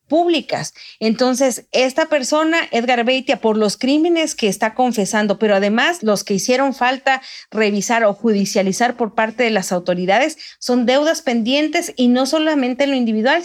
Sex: female